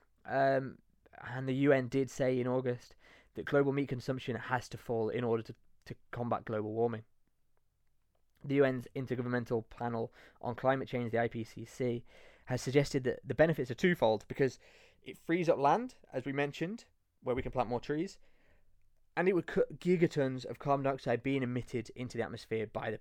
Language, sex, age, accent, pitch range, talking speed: English, male, 20-39, British, 125-175 Hz, 175 wpm